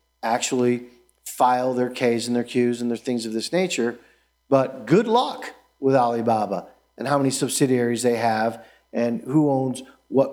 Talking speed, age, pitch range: 165 wpm, 50-69, 115-155 Hz